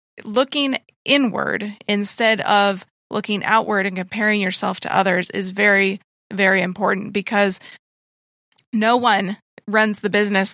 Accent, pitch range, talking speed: American, 200-245 Hz, 120 wpm